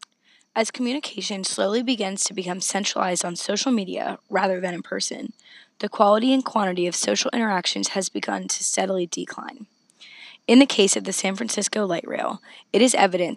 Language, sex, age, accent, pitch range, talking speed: English, female, 20-39, American, 180-225 Hz, 170 wpm